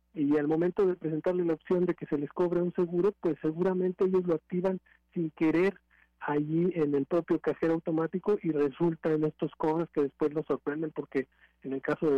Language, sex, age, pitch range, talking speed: Spanish, male, 50-69, 125-150 Hz, 200 wpm